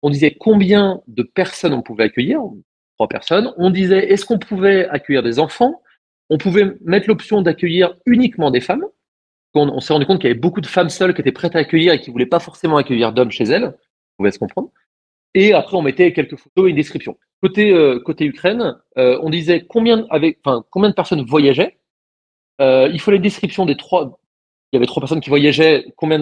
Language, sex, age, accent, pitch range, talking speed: French, male, 30-49, French, 145-195 Hz, 215 wpm